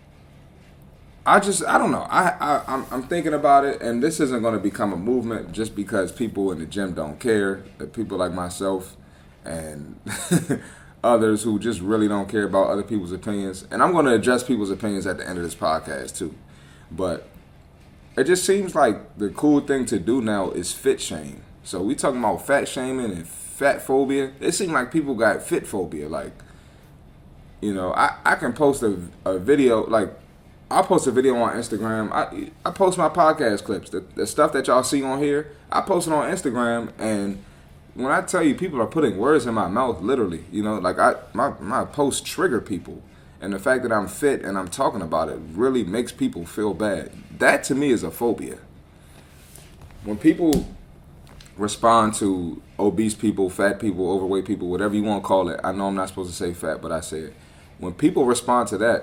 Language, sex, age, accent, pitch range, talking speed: English, male, 20-39, American, 85-120 Hz, 200 wpm